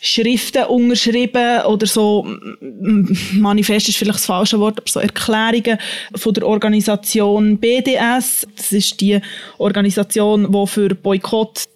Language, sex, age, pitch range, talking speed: German, female, 20-39, 200-225 Hz, 125 wpm